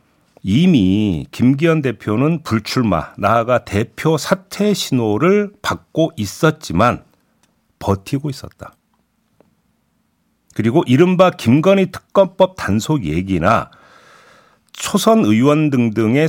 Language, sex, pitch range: Korean, male, 95-155 Hz